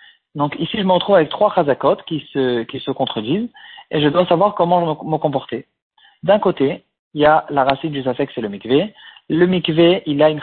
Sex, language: male, French